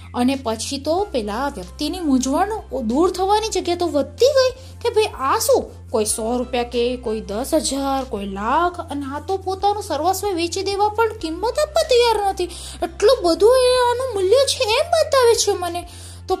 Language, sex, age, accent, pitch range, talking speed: Gujarati, female, 20-39, native, 245-380 Hz, 150 wpm